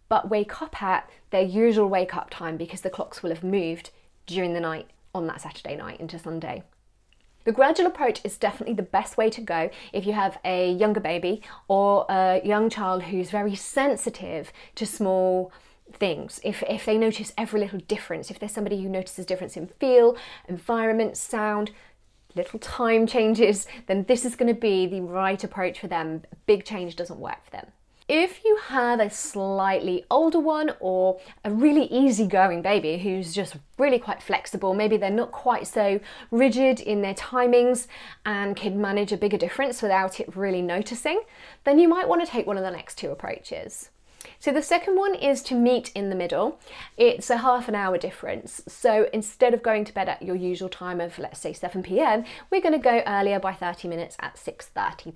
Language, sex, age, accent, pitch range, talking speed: English, female, 30-49, British, 185-240 Hz, 190 wpm